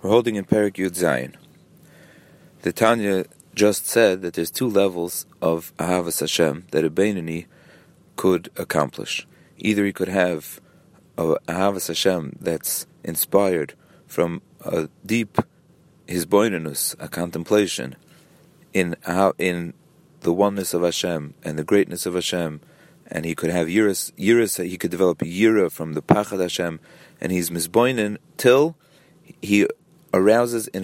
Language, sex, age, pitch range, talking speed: English, male, 40-59, 90-115 Hz, 135 wpm